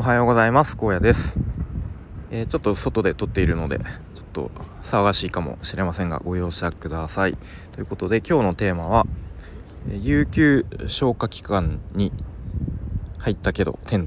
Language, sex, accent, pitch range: Japanese, male, native, 85-110 Hz